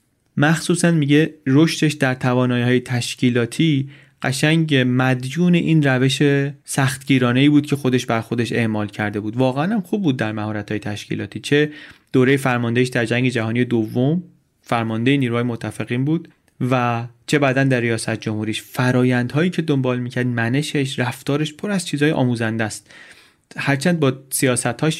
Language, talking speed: Persian, 140 wpm